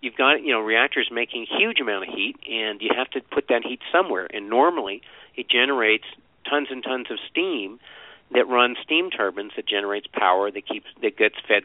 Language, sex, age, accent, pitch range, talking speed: English, male, 50-69, American, 110-145 Hz, 205 wpm